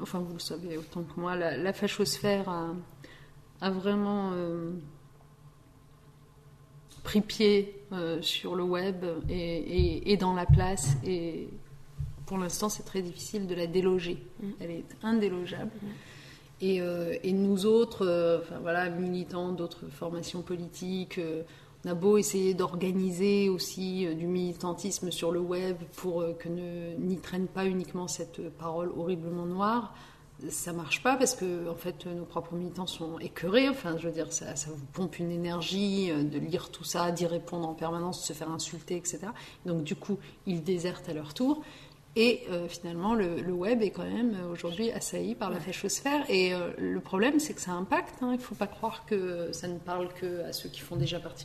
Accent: French